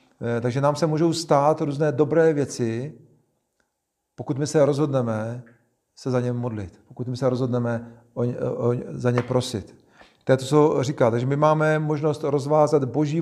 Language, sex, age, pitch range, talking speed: Czech, male, 40-59, 120-135 Hz, 170 wpm